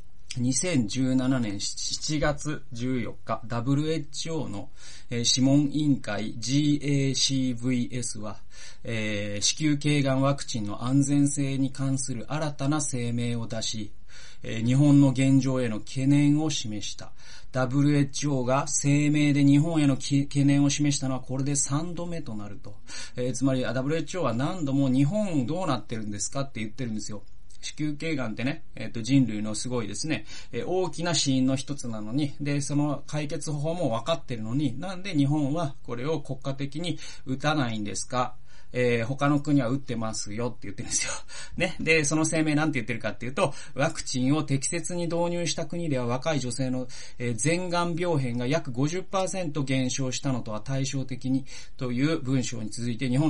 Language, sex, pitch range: Japanese, male, 120-145 Hz